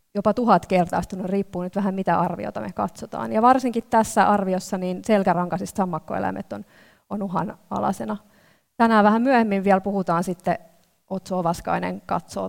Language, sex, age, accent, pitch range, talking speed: Finnish, female, 30-49, native, 180-215 Hz, 140 wpm